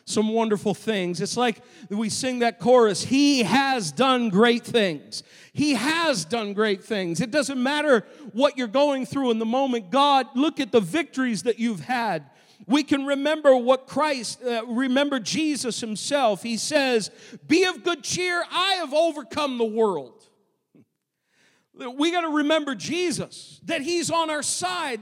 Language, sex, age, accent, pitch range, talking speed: English, male, 50-69, American, 175-270 Hz, 160 wpm